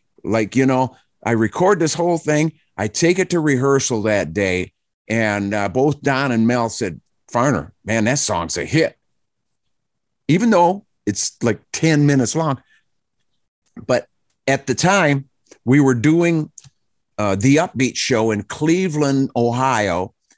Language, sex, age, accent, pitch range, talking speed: English, male, 50-69, American, 100-130 Hz, 145 wpm